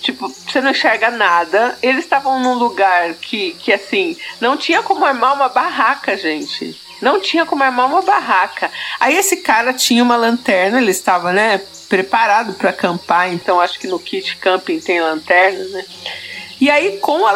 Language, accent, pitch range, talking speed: Portuguese, Brazilian, 210-290 Hz, 175 wpm